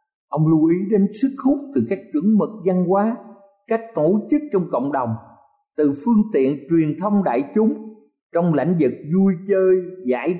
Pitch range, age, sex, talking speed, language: 140-210 Hz, 50-69, male, 180 wpm, Vietnamese